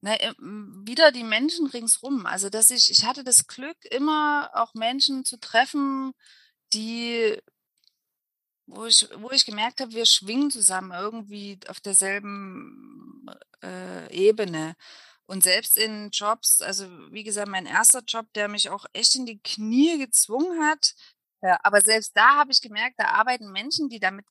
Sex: female